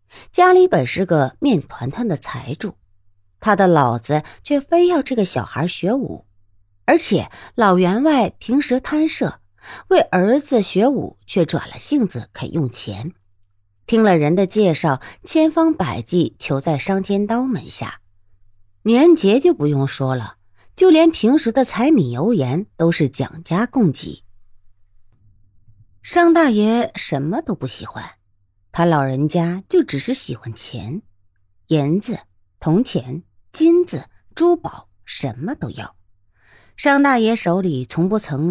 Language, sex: Chinese, female